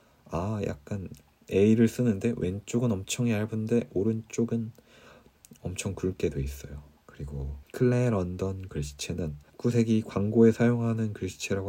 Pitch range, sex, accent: 85-120 Hz, male, native